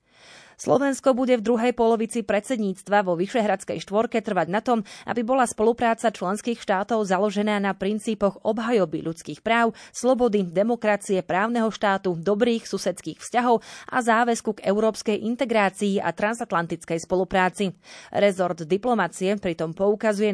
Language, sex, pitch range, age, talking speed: Slovak, female, 185-225 Hz, 30-49, 125 wpm